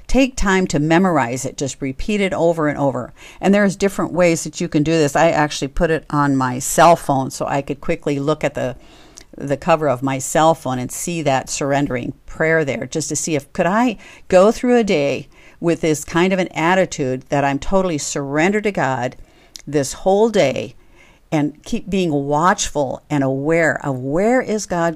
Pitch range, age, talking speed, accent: 140-175 Hz, 50-69, 195 wpm, American